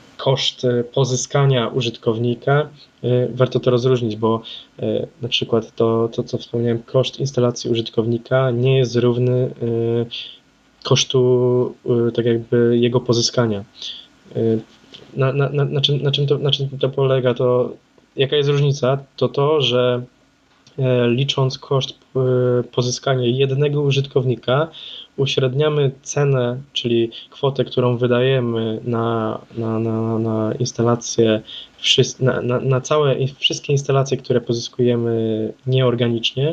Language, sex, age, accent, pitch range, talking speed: Polish, male, 10-29, native, 115-135 Hz, 110 wpm